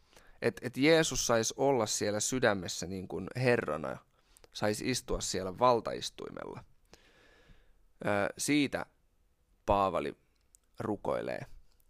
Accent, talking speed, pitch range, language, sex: native, 80 wpm, 95-125 Hz, Finnish, male